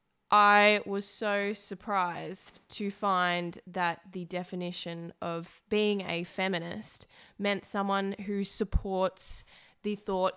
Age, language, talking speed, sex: 20-39, English, 110 wpm, female